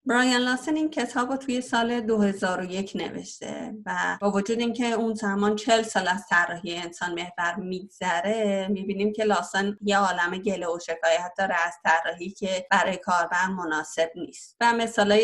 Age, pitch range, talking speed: 30-49, 175-210 Hz, 160 wpm